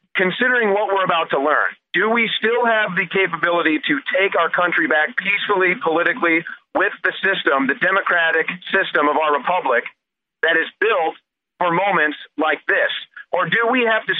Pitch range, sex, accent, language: 165-205 Hz, male, American, English